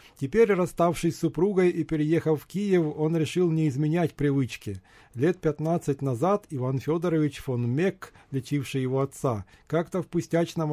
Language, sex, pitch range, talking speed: Ukrainian, male, 130-175 Hz, 145 wpm